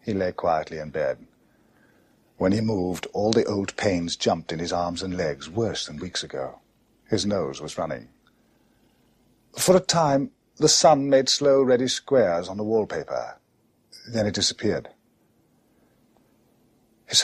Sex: male